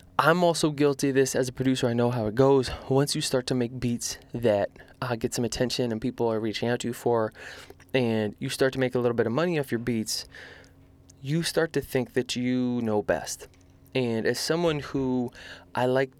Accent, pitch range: American, 115-145 Hz